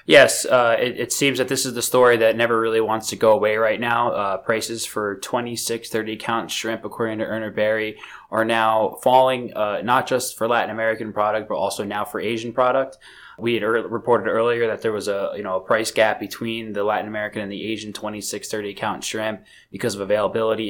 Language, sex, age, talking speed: English, male, 20-39, 220 wpm